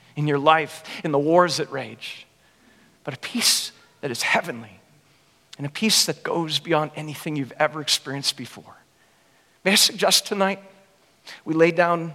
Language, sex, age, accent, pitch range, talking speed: English, male, 50-69, American, 145-175 Hz, 160 wpm